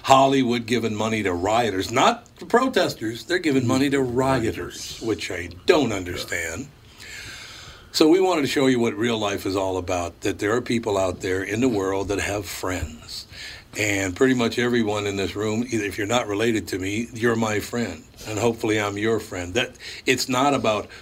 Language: English